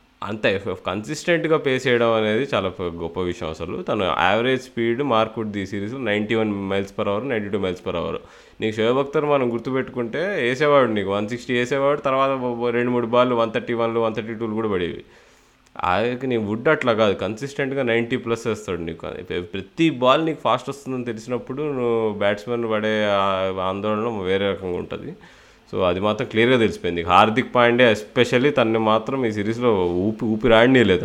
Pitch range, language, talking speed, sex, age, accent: 100-125 Hz, Telugu, 160 wpm, male, 20-39, native